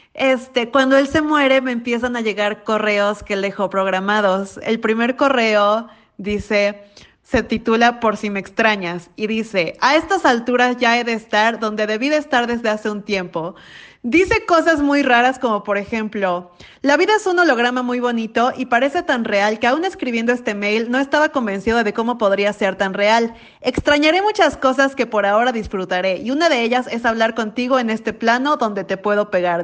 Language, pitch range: Spanish, 210-260 Hz